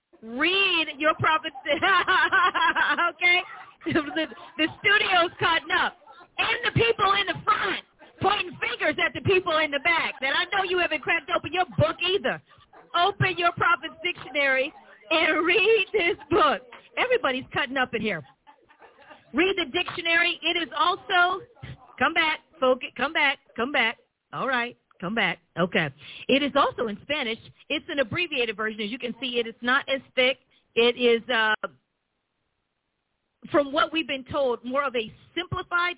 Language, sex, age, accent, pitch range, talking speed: English, female, 40-59, American, 245-345 Hz, 160 wpm